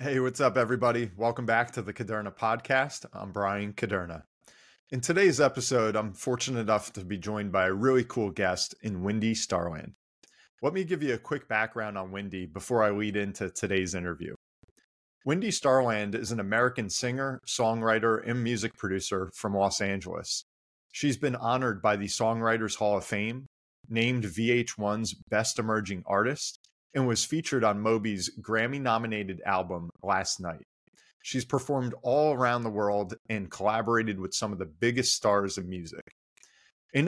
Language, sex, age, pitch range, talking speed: English, male, 30-49, 100-125 Hz, 160 wpm